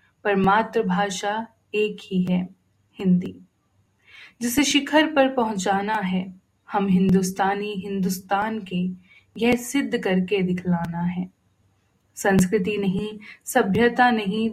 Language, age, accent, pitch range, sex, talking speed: Hindi, 20-39, native, 180-220 Hz, female, 95 wpm